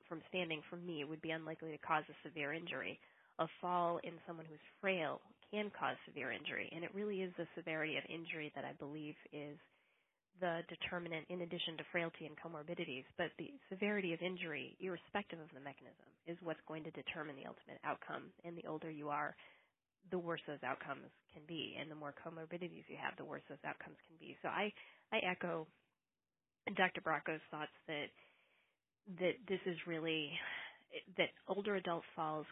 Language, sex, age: English, female, 20-39